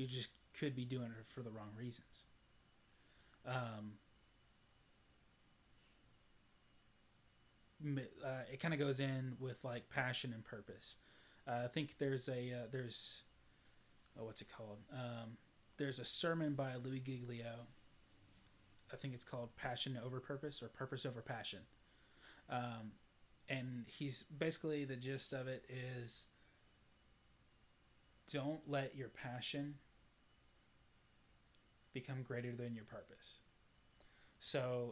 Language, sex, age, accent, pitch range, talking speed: English, male, 20-39, American, 115-135 Hz, 120 wpm